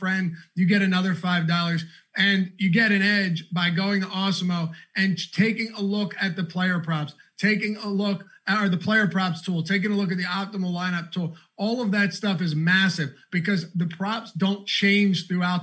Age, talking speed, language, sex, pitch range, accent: 30-49, 200 wpm, English, male, 170-200 Hz, American